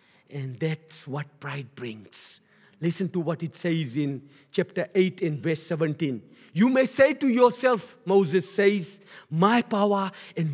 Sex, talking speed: male, 150 wpm